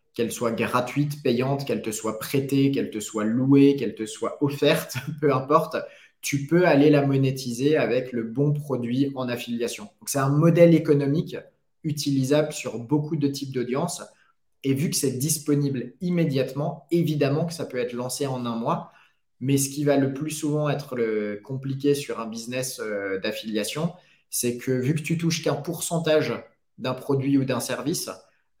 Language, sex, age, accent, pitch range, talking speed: French, male, 20-39, French, 115-145 Hz, 170 wpm